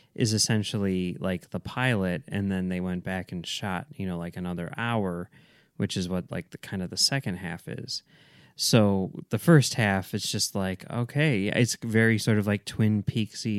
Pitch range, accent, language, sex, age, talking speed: 95-125 Hz, American, English, male, 20-39, 190 wpm